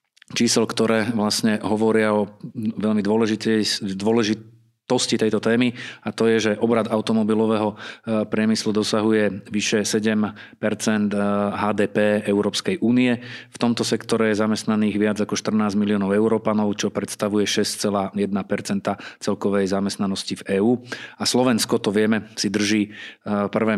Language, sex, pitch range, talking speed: Slovak, male, 105-115 Hz, 120 wpm